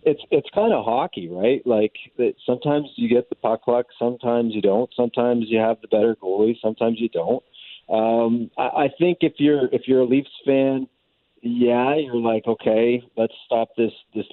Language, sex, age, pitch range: English, male, 40-59, 90-120 Hz